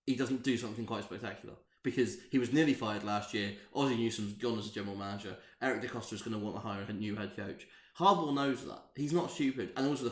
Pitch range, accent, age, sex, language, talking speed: 105-145 Hz, British, 20-39, male, English, 255 wpm